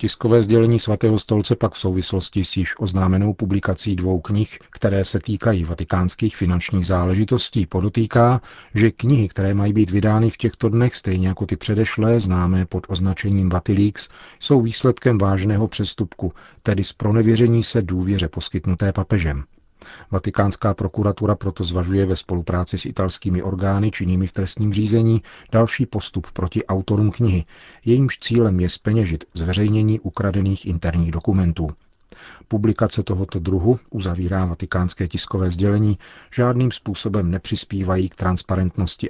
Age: 40-59